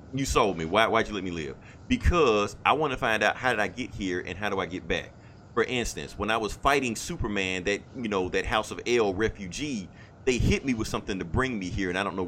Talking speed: 265 wpm